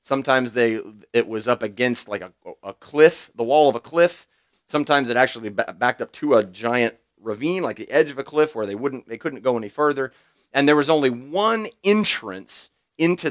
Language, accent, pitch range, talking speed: English, American, 115-155 Hz, 205 wpm